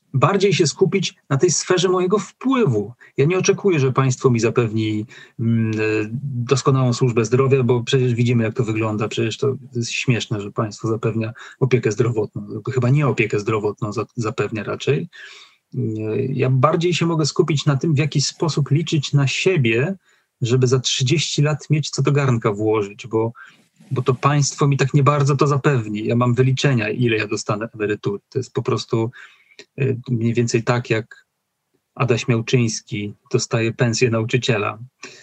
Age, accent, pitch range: 40-59, native, 115-140 Hz